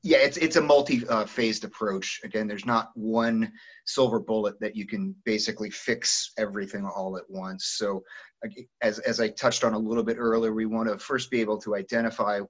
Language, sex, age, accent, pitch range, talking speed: English, male, 30-49, American, 110-180 Hz, 185 wpm